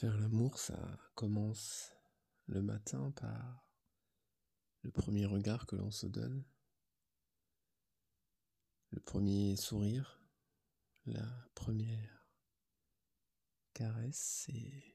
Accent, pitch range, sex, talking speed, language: French, 105-115 Hz, male, 85 wpm, French